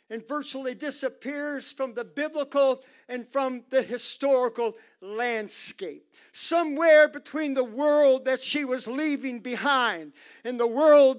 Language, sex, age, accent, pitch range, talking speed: English, male, 50-69, American, 255-305 Hz, 125 wpm